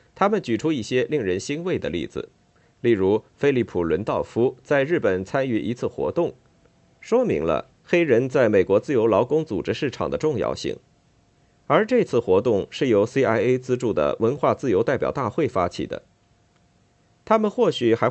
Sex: male